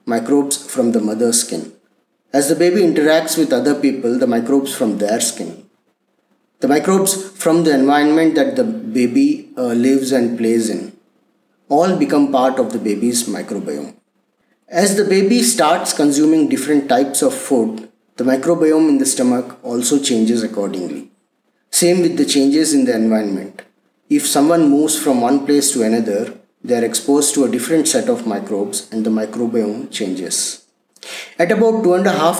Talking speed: 160 wpm